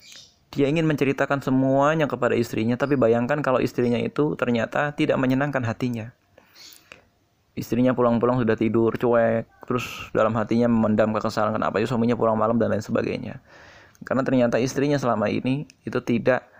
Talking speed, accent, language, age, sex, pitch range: 145 wpm, native, Indonesian, 20-39, male, 115-140 Hz